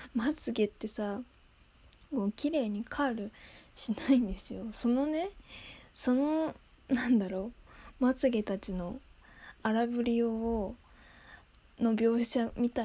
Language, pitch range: Japanese, 205-260 Hz